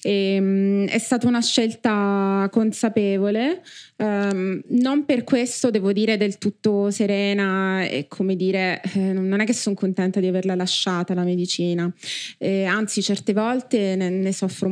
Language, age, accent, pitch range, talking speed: Italian, 20-39, native, 180-210 Hz, 150 wpm